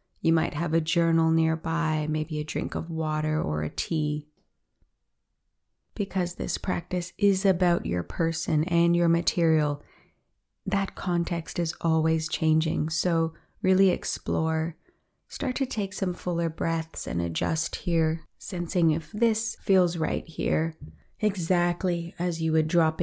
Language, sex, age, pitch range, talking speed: English, female, 30-49, 160-185 Hz, 135 wpm